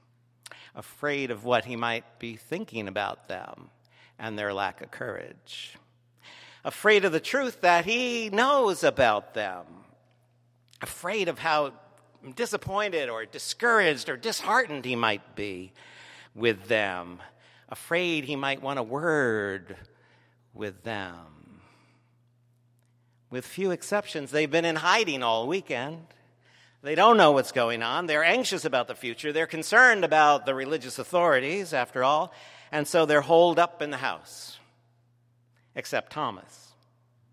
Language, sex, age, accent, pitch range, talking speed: English, male, 60-79, American, 120-175 Hz, 130 wpm